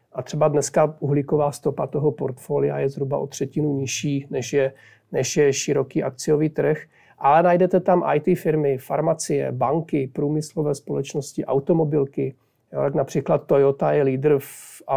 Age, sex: 40-59, male